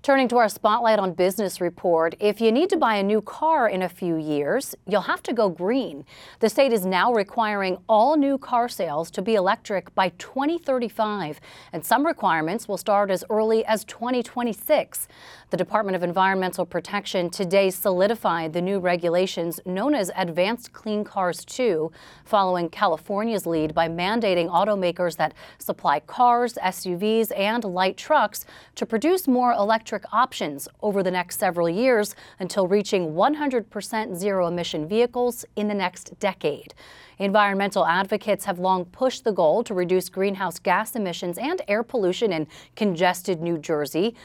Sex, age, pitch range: female, 30-49, 180-235 Hz